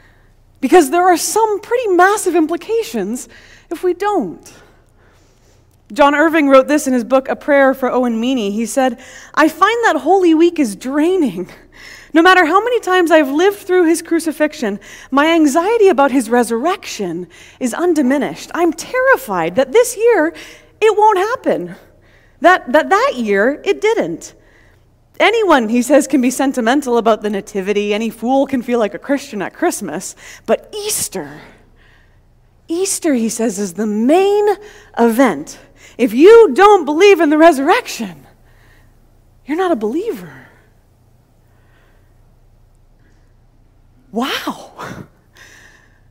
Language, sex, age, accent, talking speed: English, female, 30-49, American, 130 wpm